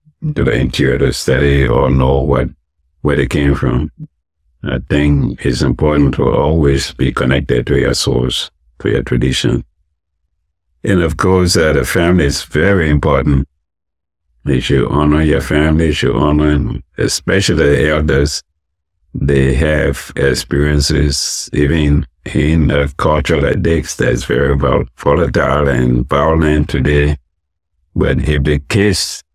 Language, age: English, 60-79